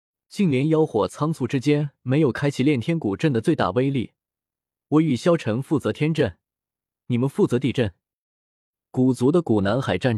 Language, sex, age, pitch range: Chinese, male, 20-39, 115-165 Hz